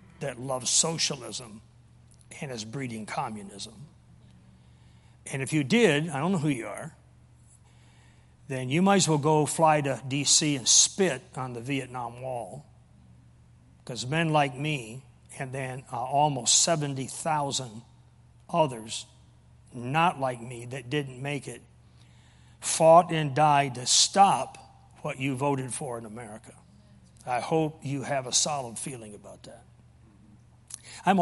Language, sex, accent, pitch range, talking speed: English, male, American, 120-155 Hz, 135 wpm